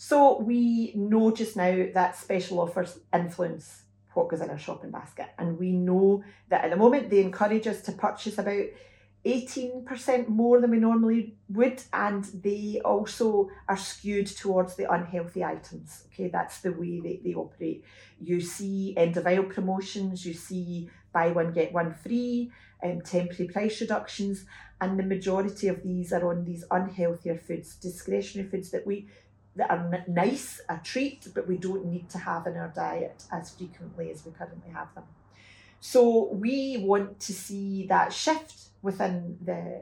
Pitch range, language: 175-215 Hz, English